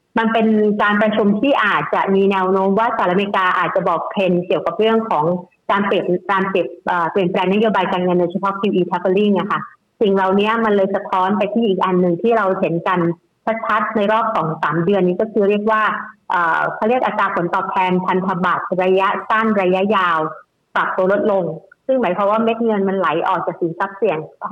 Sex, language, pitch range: female, Thai, 185-225 Hz